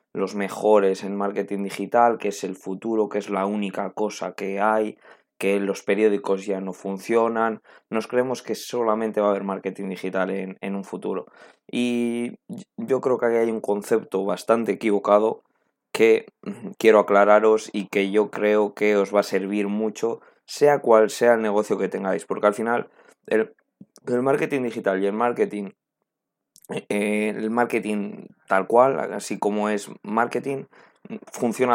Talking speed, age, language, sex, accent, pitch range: 160 wpm, 20-39, Spanish, male, Spanish, 100-115 Hz